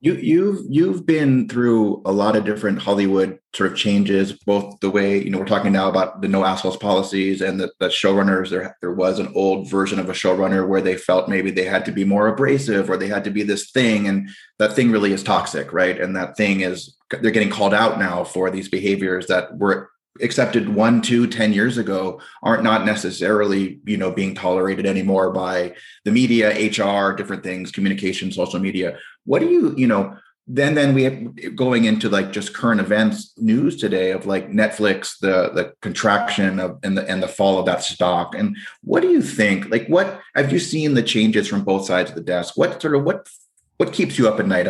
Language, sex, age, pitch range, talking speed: English, male, 20-39, 95-110 Hz, 215 wpm